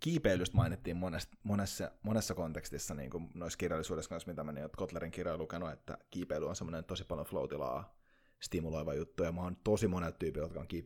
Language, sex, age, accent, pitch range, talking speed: Finnish, male, 30-49, native, 85-115 Hz, 190 wpm